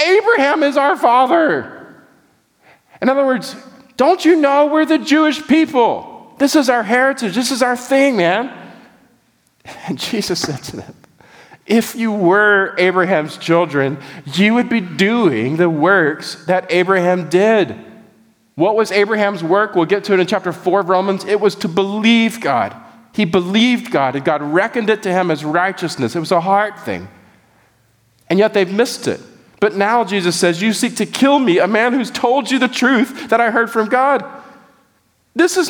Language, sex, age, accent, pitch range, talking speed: English, male, 40-59, American, 160-255 Hz, 175 wpm